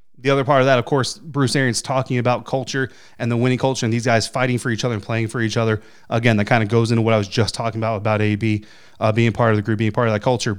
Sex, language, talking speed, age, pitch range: male, English, 300 wpm, 30-49, 115-140 Hz